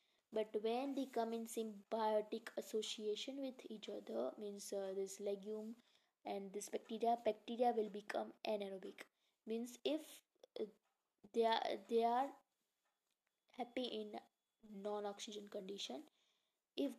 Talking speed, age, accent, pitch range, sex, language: 115 wpm, 20-39, Indian, 215-250 Hz, female, English